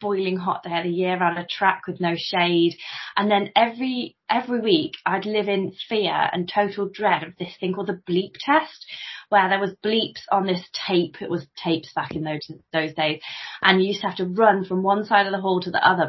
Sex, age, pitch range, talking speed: female, 20-39, 175-225 Hz, 230 wpm